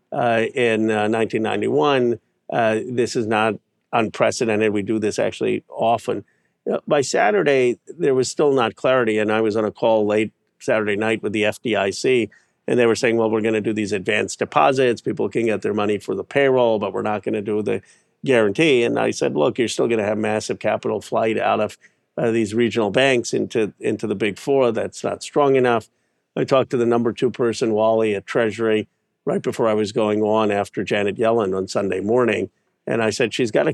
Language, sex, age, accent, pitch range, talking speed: English, male, 50-69, American, 105-120 Hz, 205 wpm